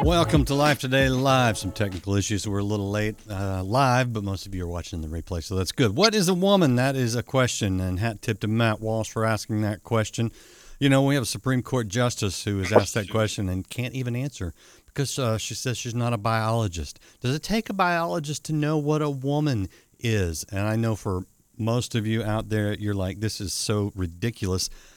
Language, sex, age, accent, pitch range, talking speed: English, male, 50-69, American, 100-130 Hz, 225 wpm